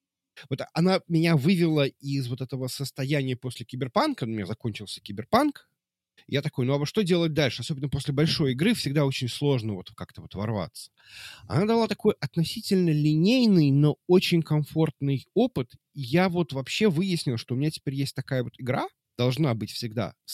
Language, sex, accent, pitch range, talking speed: Russian, male, native, 125-170 Hz, 170 wpm